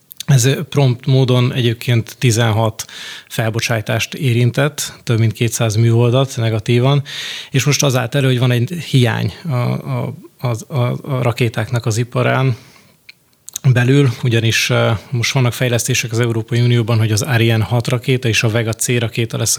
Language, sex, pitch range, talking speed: Hungarian, male, 115-130 Hz, 140 wpm